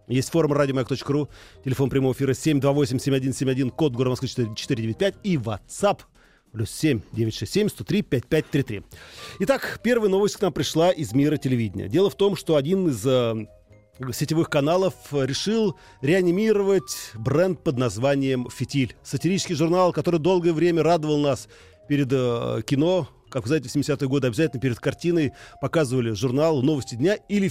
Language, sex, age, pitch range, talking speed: Russian, male, 40-59, 130-170 Hz, 130 wpm